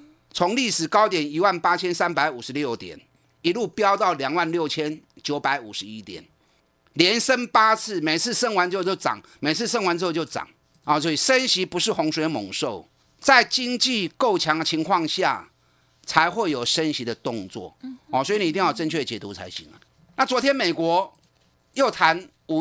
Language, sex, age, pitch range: Chinese, male, 30-49, 145-225 Hz